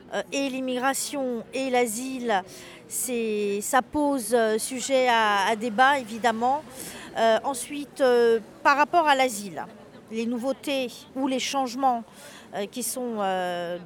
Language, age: French, 40-59